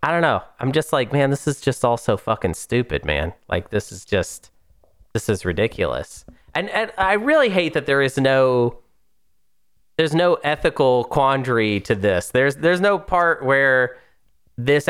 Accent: American